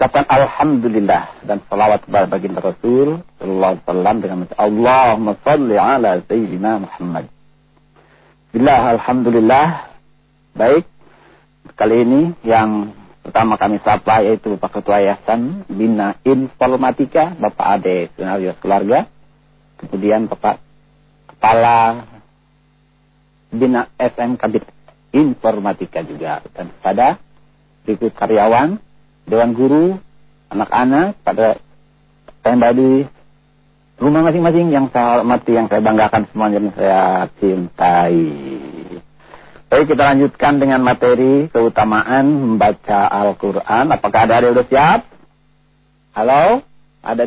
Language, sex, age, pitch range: Indonesian, male, 50-69, 105-140 Hz